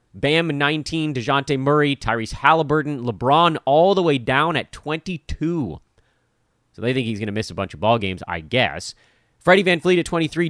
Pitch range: 110-150 Hz